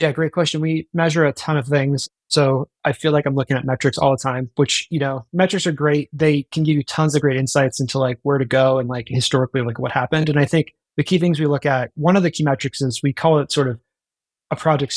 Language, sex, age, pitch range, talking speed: English, male, 20-39, 130-155 Hz, 270 wpm